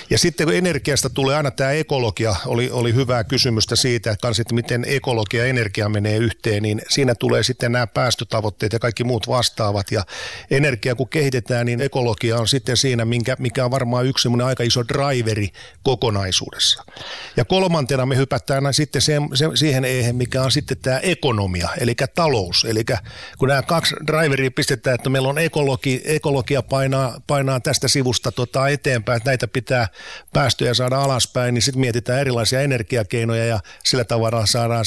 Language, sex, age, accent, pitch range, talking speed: Finnish, male, 50-69, native, 115-135 Hz, 170 wpm